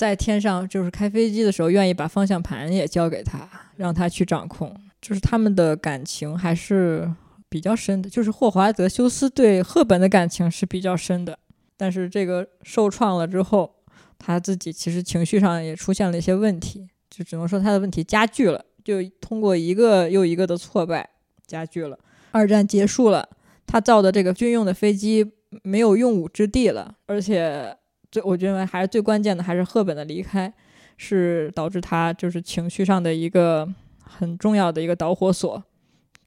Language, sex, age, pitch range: Chinese, female, 20-39, 170-200 Hz